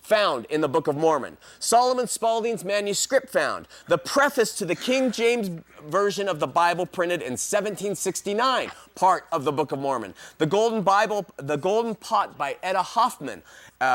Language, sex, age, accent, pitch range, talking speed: English, male, 30-49, American, 135-190 Hz, 165 wpm